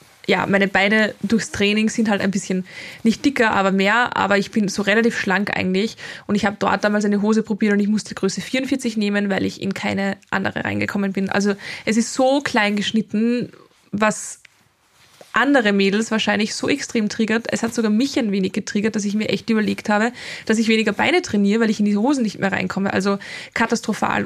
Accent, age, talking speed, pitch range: German, 20-39, 205 wpm, 200-225 Hz